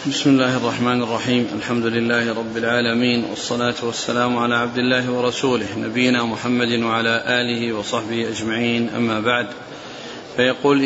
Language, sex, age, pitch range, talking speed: Arabic, male, 40-59, 125-145 Hz, 125 wpm